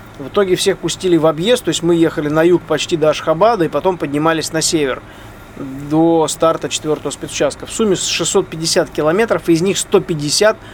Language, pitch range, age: Russian, 140-170 Hz, 20-39